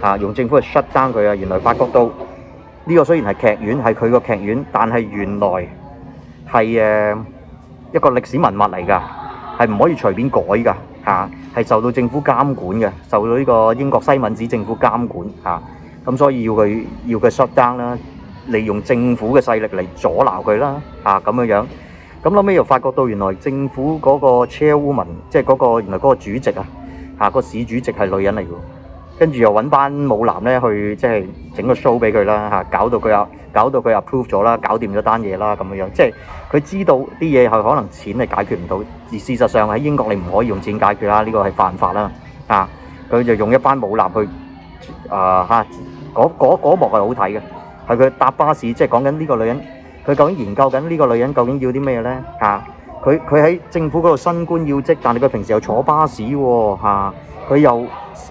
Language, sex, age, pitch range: English, male, 30-49, 105-135 Hz